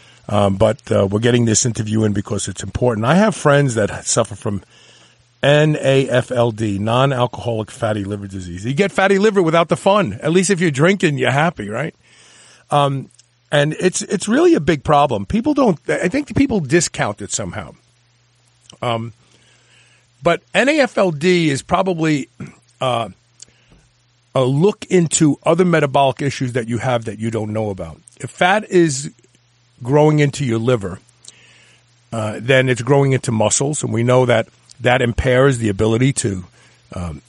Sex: male